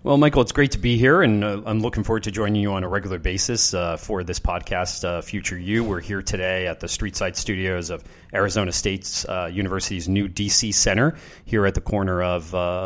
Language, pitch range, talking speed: English, 90-105 Hz, 215 wpm